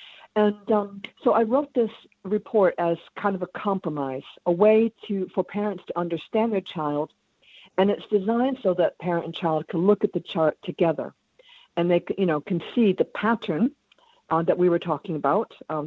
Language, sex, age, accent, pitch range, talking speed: English, female, 50-69, American, 165-205 Hz, 190 wpm